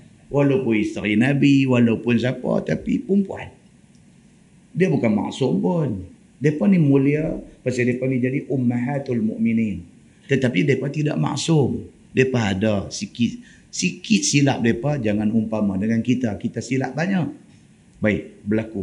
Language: Malay